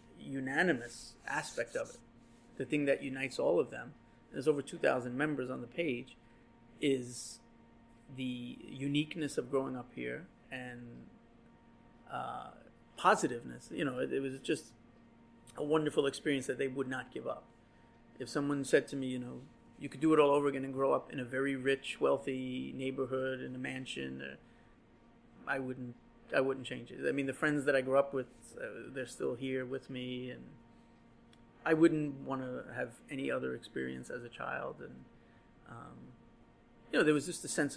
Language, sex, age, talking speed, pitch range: English, male, 30-49, 180 wpm, 120-140 Hz